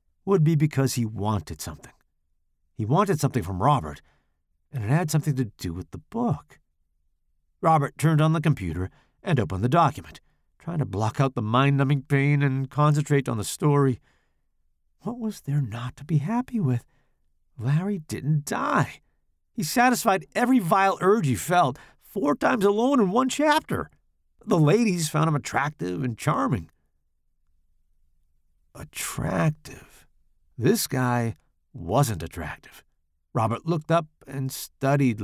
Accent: American